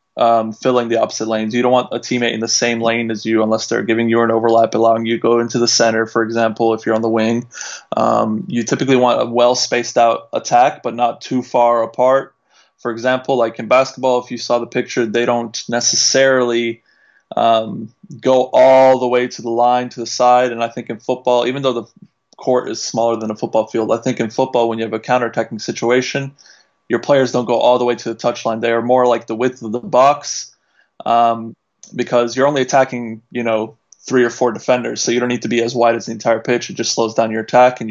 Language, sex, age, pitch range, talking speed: Swedish, male, 20-39, 115-125 Hz, 230 wpm